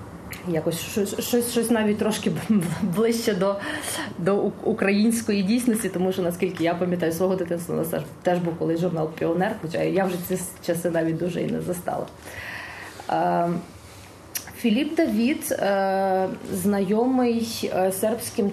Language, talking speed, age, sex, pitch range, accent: Ukrainian, 115 wpm, 30-49, female, 170-200 Hz, native